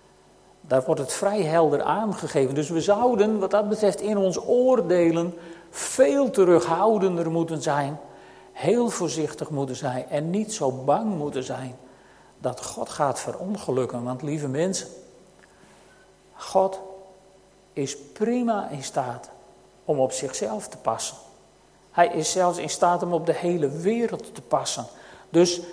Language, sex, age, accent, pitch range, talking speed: Dutch, male, 50-69, Dutch, 155-200 Hz, 140 wpm